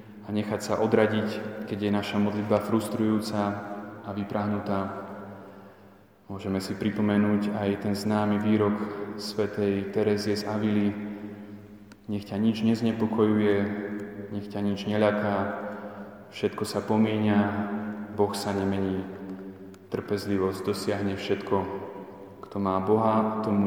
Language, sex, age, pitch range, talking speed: Slovak, male, 20-39, 100-105 Hz, 110 wpm